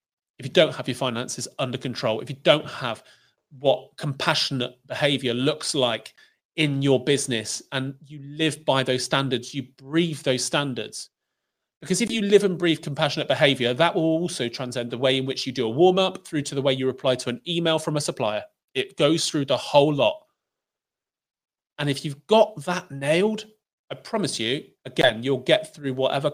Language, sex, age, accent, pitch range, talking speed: English, male, 30-49, British, 125-160 Hz, 185 wpm